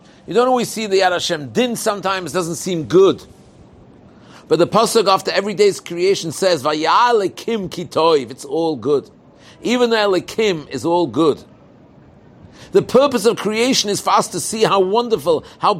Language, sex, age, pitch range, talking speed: English, male, 50-69, 170-225 Hz, 165 wpm